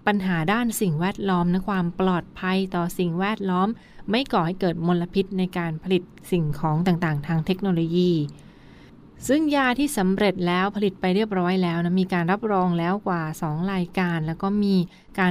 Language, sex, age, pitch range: Thai, female, 20-39, 175-195 Hz